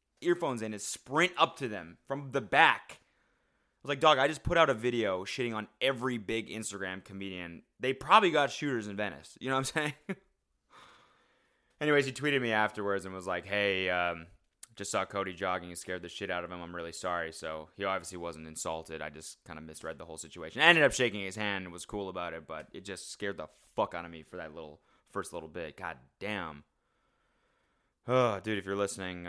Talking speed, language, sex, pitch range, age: 220 wpm, English, male, 85-105 Hz, 20-39